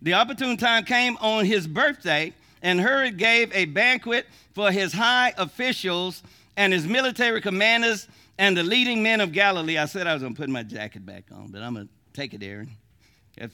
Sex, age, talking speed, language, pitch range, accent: male, 50-69, 200 wpm, English, 165-230 Hz, American